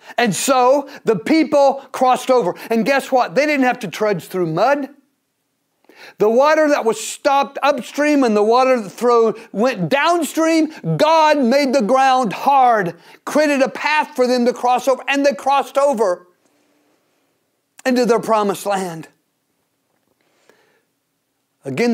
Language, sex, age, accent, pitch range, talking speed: English, male, 50-69, American, 235-305 Hz, 135 wpm